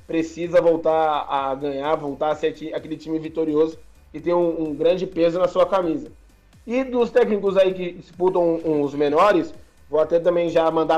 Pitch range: 160-185 Hz